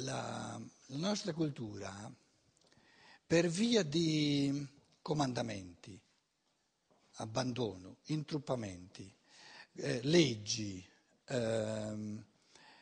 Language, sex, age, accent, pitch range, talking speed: Italian, male, 60-79, native, 145-240 Hz, 60 wpm